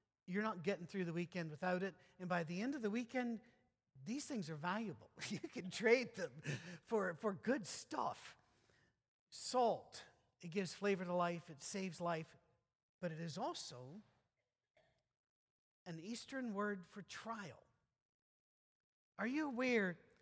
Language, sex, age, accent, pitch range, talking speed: English, male, 50-69, American, 160-205 Hz, 140 wpm